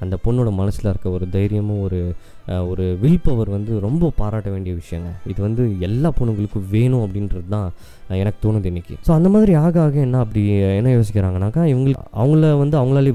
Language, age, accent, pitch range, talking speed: Tamil, 20-39, native, 100-125 Hz, 160 wpm